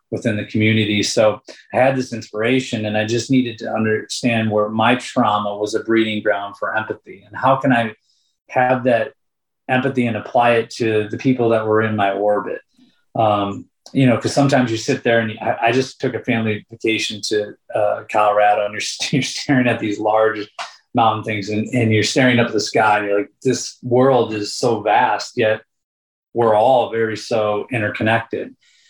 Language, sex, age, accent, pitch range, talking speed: English, male, 30-49, American, 105-120 Hz, 190 wpm